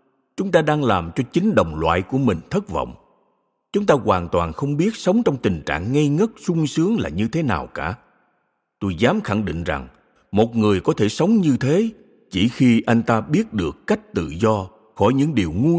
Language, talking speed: Vietnamese, 215 wpm